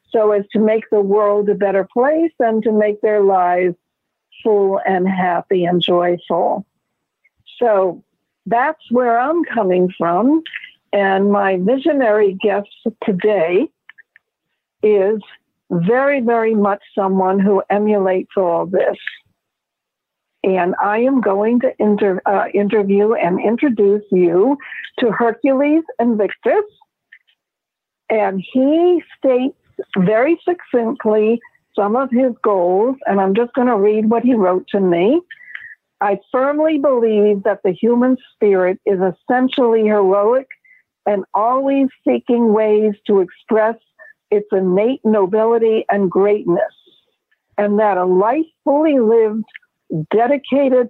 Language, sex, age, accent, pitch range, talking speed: English, female, 60-79, American, 195-250 Hz, 120 wpm